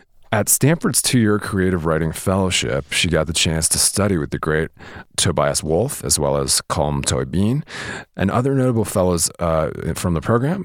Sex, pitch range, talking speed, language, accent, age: male, 75-100 Hz, 170 wpm, English, American, 40-59